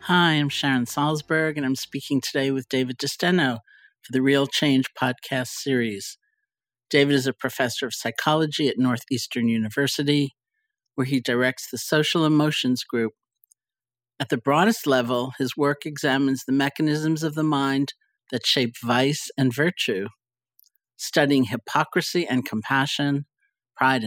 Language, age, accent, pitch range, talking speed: English, 50-69, American, 125-155 Hz, 135 wpm